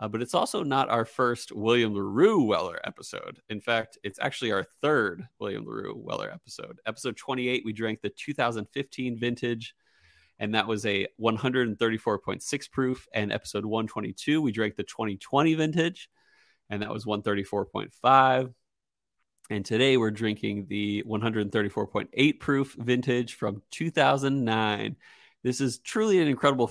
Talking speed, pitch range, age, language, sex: 135 wpm, 105-125 Hz, 30-49, English, male